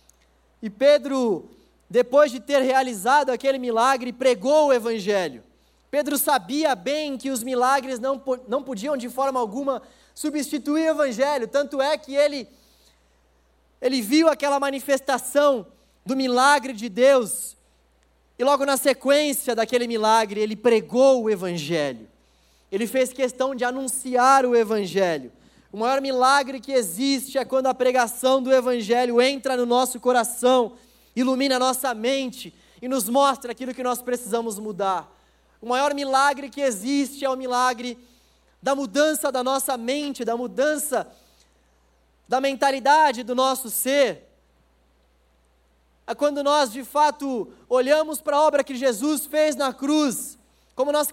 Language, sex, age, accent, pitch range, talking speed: Portuguese, male, 20-39, Brazilian, 235-280 Hz, 140 wpm